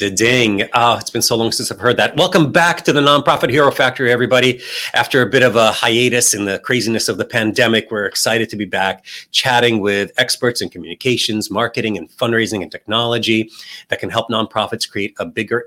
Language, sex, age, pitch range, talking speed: English, male, 30-49, 105-125 Hz, 190 wpm